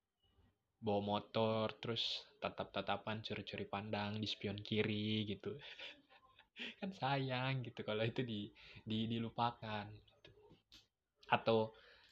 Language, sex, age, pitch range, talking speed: Indonesian, male, 20-39, 105-150 Hz, 105 wpm